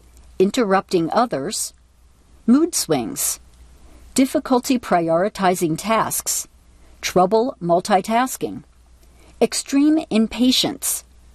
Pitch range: 165-225 Hz